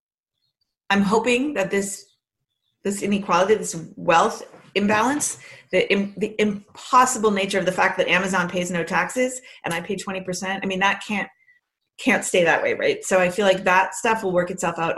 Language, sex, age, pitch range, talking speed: English, female, 30-49, 170-200 Hz, 175 wpm